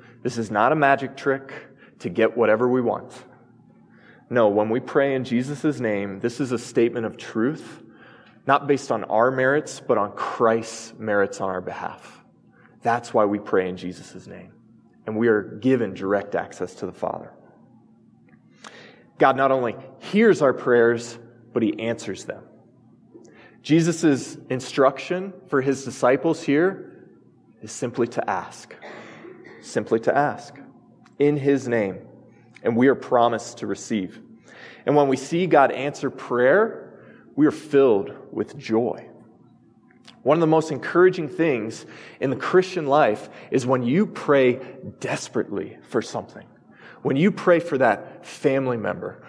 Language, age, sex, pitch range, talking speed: English, 20-39, male, 115-145 Hz, 145 wpm